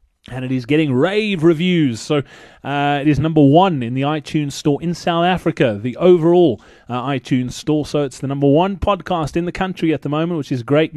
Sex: male